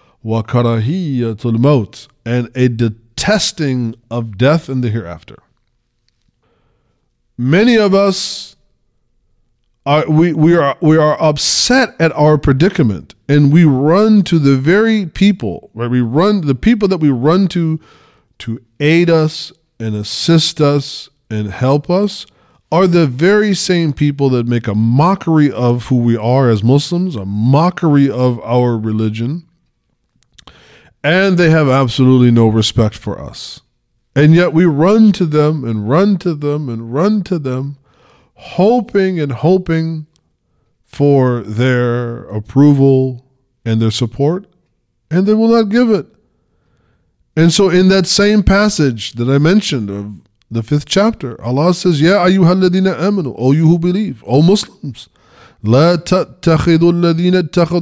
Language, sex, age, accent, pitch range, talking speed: English, male, 20-39, American, 120-180 Hz, 135 wpm